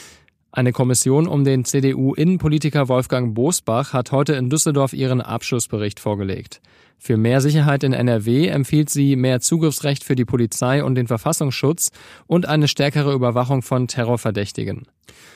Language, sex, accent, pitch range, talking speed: German, male, German, 120-145 Hz, 135 wpm